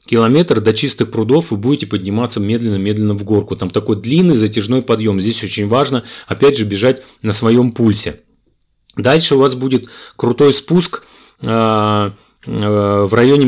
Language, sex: Russian, male